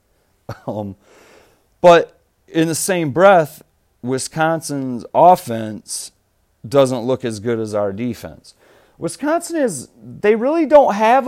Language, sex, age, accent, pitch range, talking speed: English, male, 30-49, American, 105-170 Hz, 110 wpm